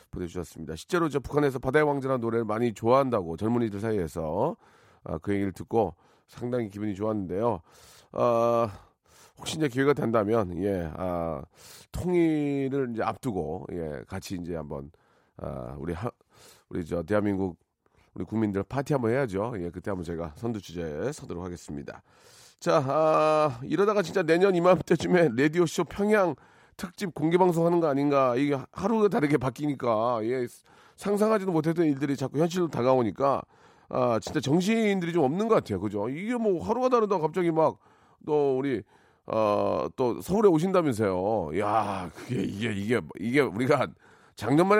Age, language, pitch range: 40-59, Korean, 105-165 Hz